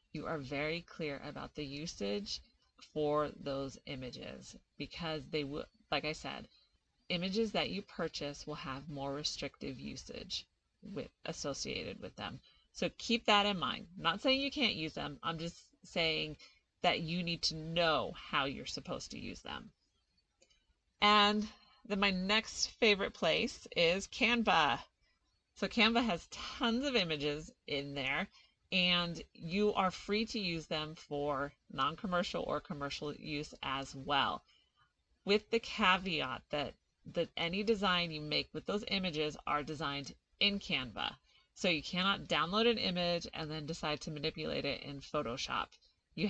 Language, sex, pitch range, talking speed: English, female, 150-200 Hz, 150 wpm